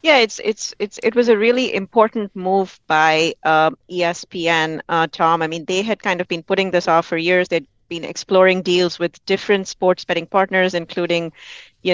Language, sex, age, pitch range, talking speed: English, female, 30-49, 175-205 Hz, 190 wpm